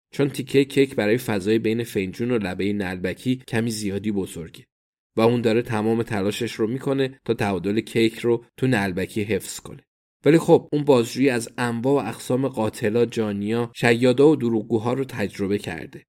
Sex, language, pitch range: male, Persian, 105-130 Hz